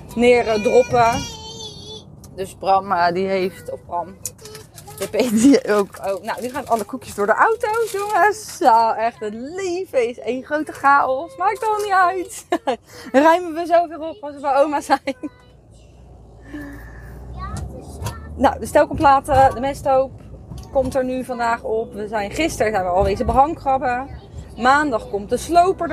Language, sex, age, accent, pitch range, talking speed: Dutch, female, 20-39, Dutch, 185-260 Hz, 155 wpm